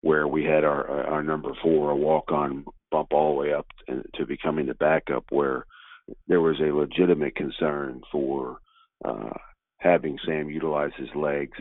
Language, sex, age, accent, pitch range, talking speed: English, male, 50-69, American, 75-85 Hz, 165 wpm